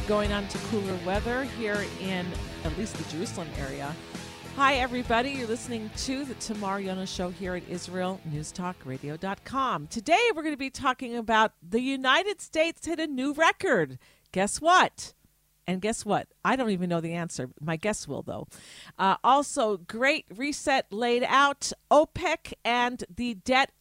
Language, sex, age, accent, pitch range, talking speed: English, female, 50-69, American, 185-270 Hz, 160 wpm